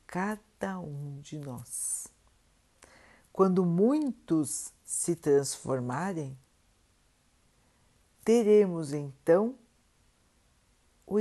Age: 60-79